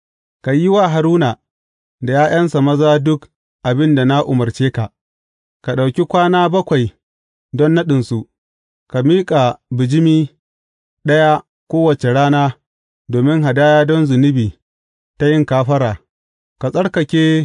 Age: 30-49